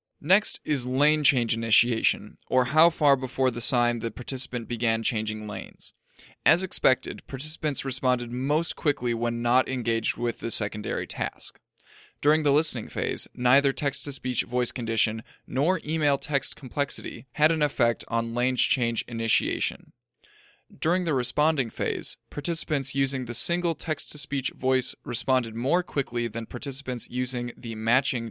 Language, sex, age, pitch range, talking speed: English, male, 10-29, 115-140 Hz, 140 wpm